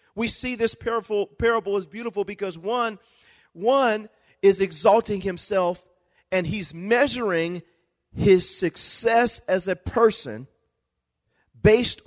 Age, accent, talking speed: 40-59, American, 110 wpm